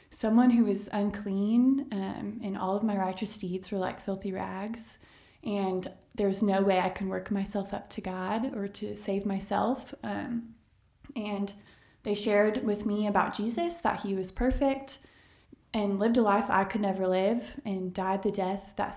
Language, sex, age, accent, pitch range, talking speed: English, female, 20-39, American, 190-220 Hz, 175 wpm